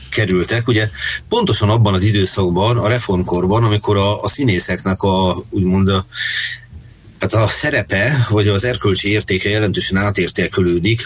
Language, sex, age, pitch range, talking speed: Hungarian, male, 30-49, 90-110 Hz, 130 wpm